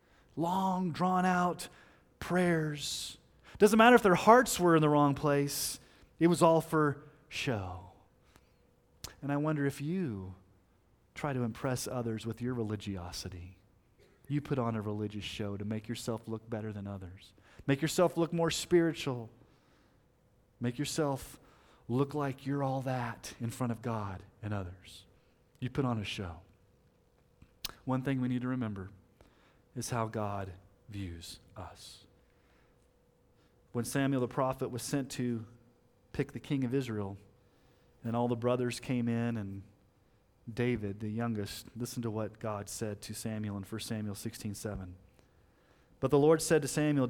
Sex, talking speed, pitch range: male, 150 wpm, 105-140 Hz